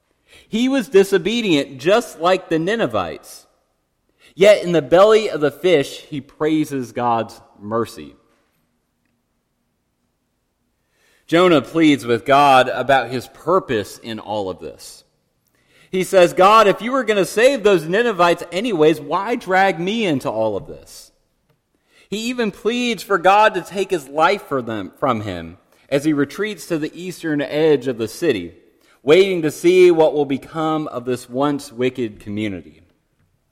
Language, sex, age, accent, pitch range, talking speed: English, male, 30-49, American, 135-190 Hz, 145 wpm